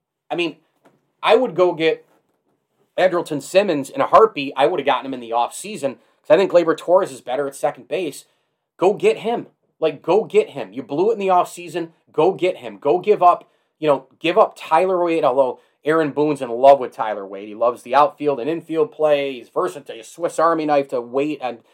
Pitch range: 140-185 Hz